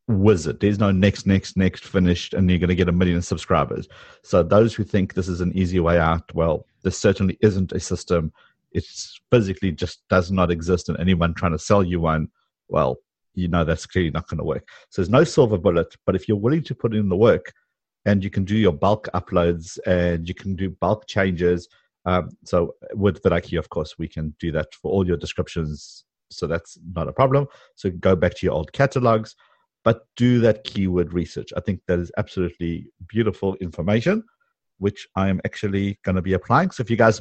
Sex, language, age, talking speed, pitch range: male, English, 50-69, 210 wpm, 90-110 Hz